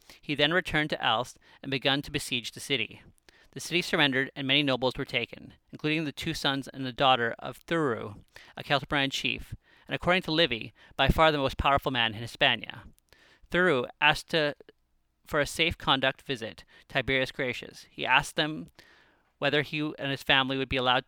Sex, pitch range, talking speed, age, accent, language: male, 125-150 Hz, 180 wpm, 30-49, American, English